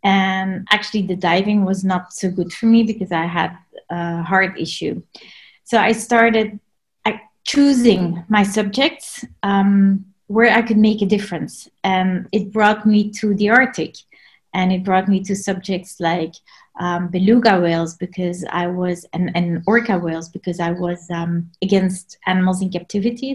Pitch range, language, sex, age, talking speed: 180-215 Hz, English, female, 30-49, 155 wpm